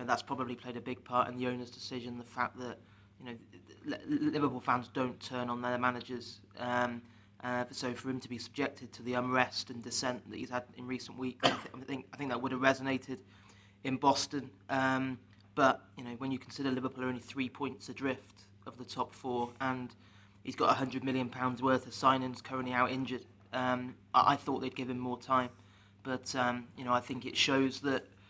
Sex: male